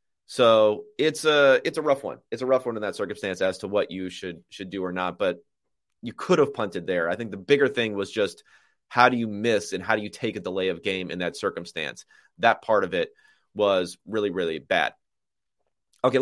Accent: American